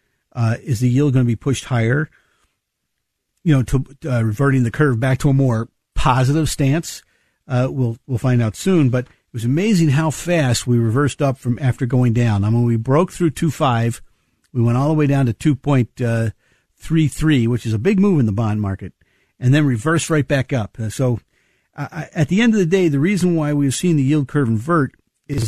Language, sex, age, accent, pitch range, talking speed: English, male, 50-69, American, 115-150 Hz, 215 wpm